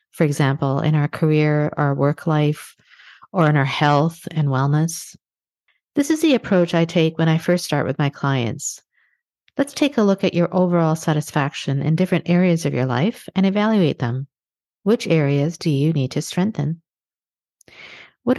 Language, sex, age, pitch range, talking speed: English, female, 50-69, 145-175 Hz, 170 wpm